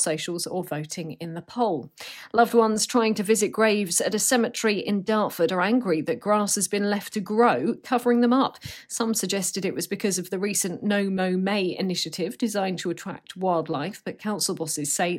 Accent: British